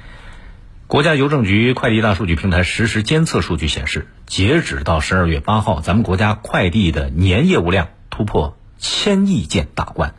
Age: 50-69